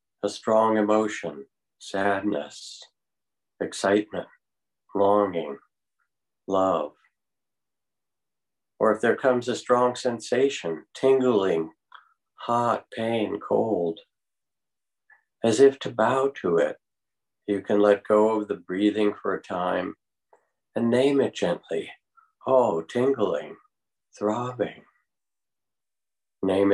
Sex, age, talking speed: male, 60-79, 95 wpm